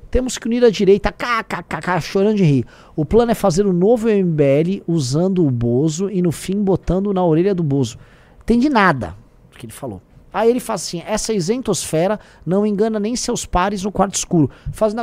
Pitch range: 155-230 Hz